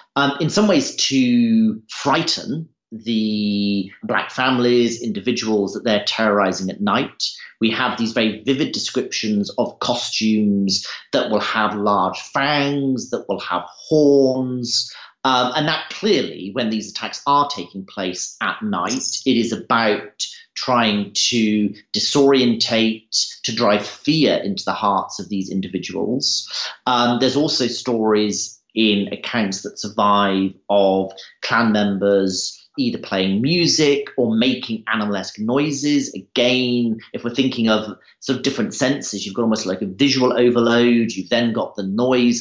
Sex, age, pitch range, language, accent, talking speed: male, 40-59, 100-130 Hz, English, British, 140 wpm